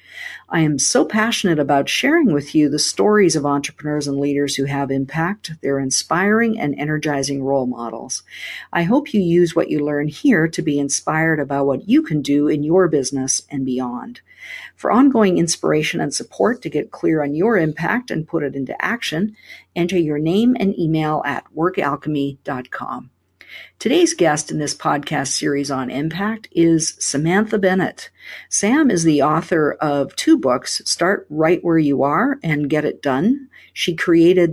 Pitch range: 140-185 Hz